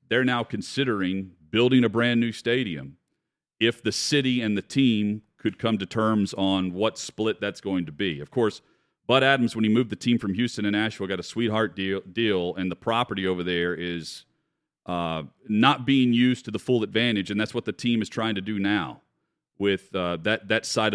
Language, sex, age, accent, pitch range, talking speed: English, male, 40-59, American, 95-120 Hz, 205 wpm